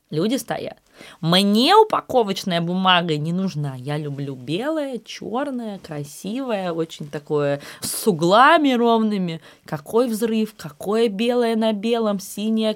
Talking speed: 115 wpm